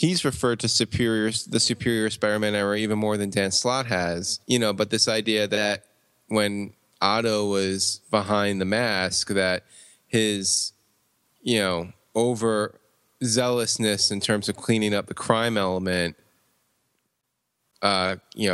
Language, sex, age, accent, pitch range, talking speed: English, male, 20-39, American, 95-115 Hz, 135 wpm